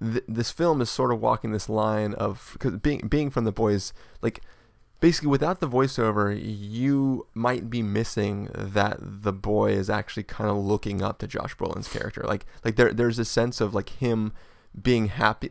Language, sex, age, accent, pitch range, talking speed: English, male, 20-39, American, 100-120 Hz, 190 wpm